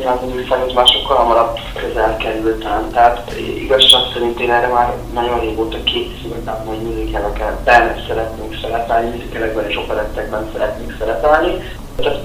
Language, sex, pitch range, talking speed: Hungarian, male, 110-130 Hz, 135 wpm